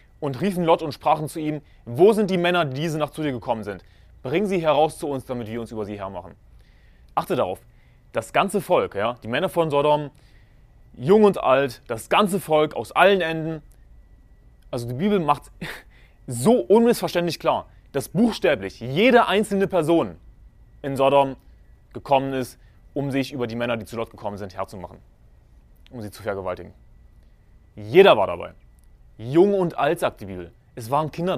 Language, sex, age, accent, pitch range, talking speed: German, male, 30-49, German, 105-155 Hz, 170 wpm